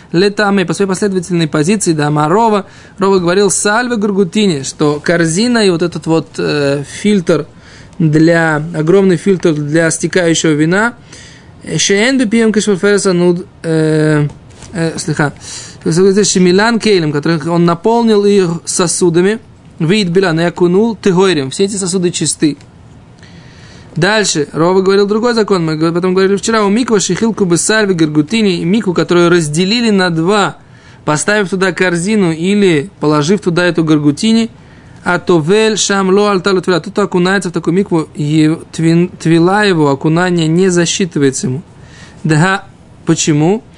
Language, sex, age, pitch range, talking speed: Russian, male, 20-39, 160-200 Hz, 120 wpm